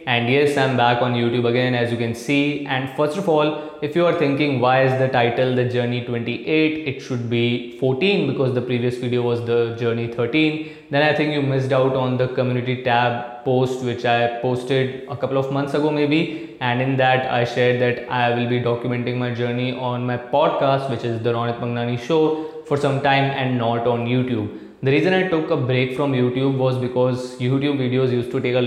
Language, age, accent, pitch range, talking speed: Hindi, 20-39, native, 120-145 Hz, 215 wpm